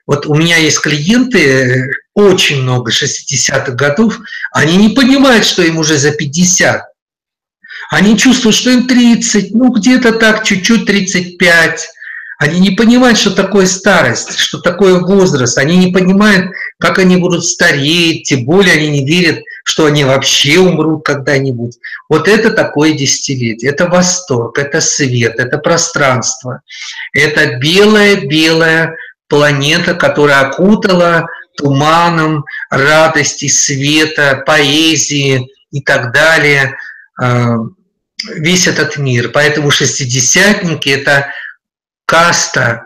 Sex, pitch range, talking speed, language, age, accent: male, 140-185 Hz, 115 wpm, Russian, 50-69, native